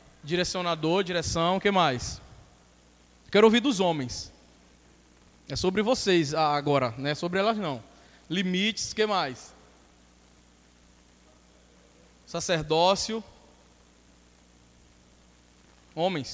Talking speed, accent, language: 90 wpm, Brazilian, Portuguese